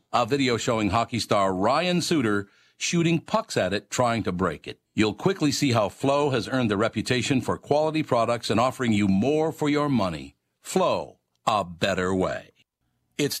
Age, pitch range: 60-79, 95-125 Hz